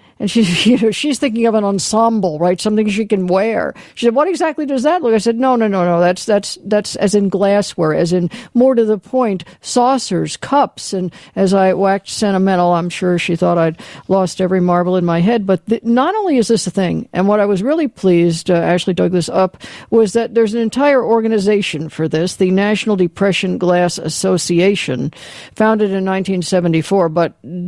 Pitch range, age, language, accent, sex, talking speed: 175-230 Hz, 60-79, English, American, female, 200 wpm